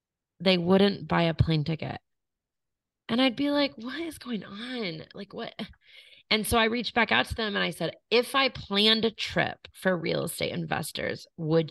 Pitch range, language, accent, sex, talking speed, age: 150-185 Hz, English, American, female, 190 wpm, 30-49